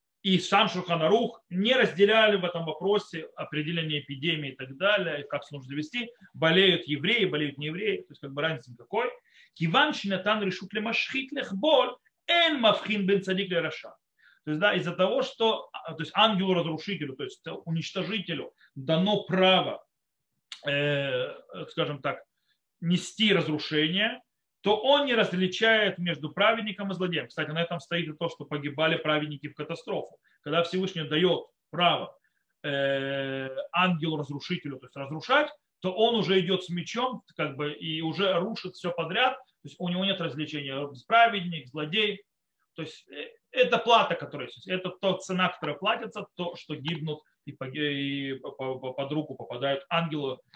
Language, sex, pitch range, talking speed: Russian, male, 150-210 Hz, 140 wpm